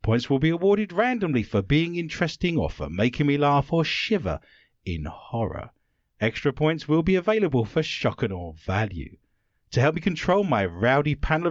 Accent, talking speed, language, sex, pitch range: British, 175 wpm, English, male, 105-175 Hz